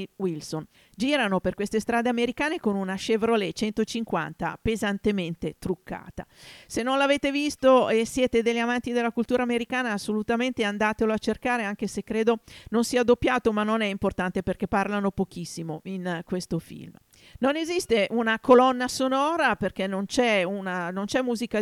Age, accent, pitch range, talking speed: 50-69, native, 195-250 Hz, 145 wpm